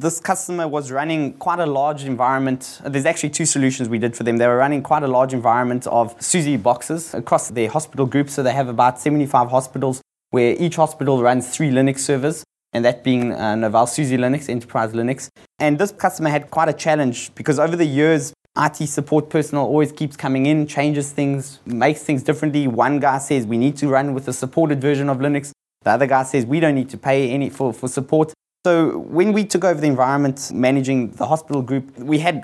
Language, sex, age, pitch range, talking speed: English, male, 20-39, 125-150 Hz, 210 wpm